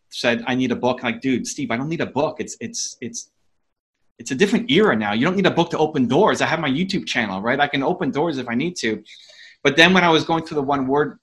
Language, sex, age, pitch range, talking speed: English, male, 30-49, 130-160 Hz, 290 wpm